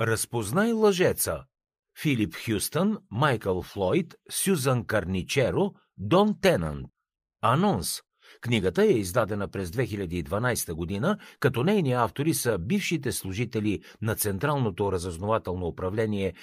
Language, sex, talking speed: Bulgarian, male, 100 wpm